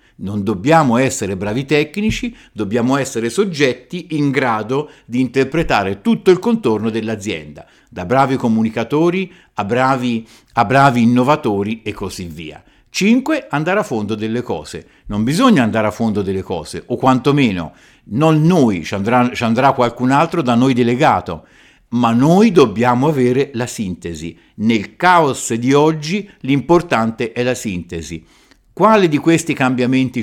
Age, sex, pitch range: 50-69, male, 110-155 Hz